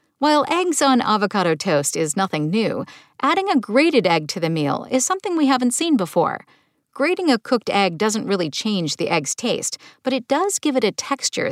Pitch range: 180-265 Hz